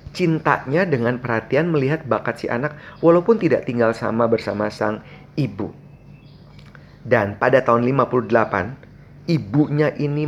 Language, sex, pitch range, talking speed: Indonesian, male, 115-155 Hz, 115 wpm